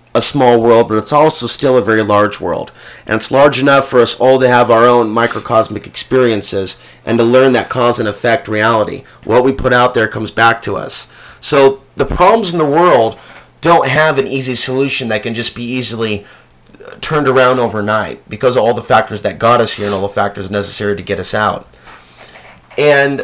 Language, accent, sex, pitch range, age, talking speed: English, American, male, 115-140 Hz, 30-49, 205 wpm